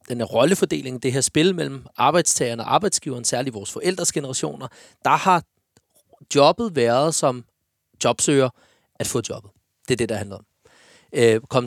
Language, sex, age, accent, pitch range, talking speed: Danish, male, 30-49, native, 125-155 Hz, 150 wpm